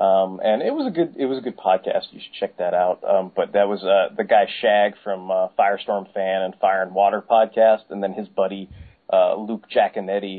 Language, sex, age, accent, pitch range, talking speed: English, male, 30-49, American, 95-115 Hz, 230 wpm